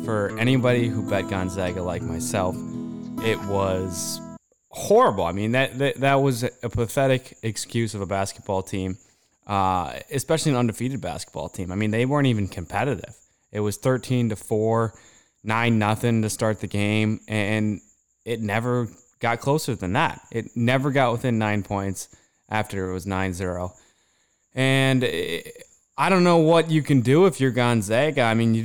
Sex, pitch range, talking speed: male, 105-130 Hz, 165 wpm